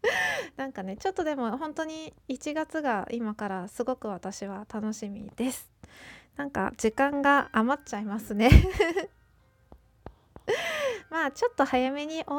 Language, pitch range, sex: Japanese, 215-300 Hz, female